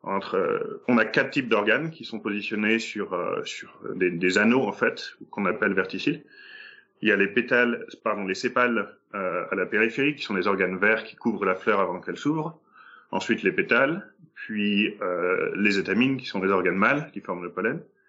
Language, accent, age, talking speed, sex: French, French, 30-49, 200 wpm, male